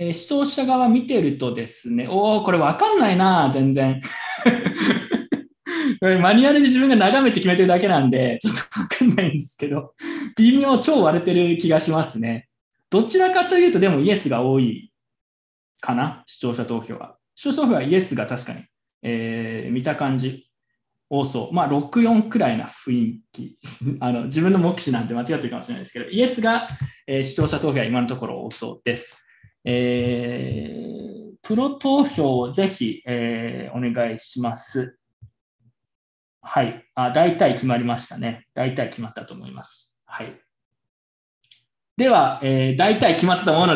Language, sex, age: Japanese, male, 20-39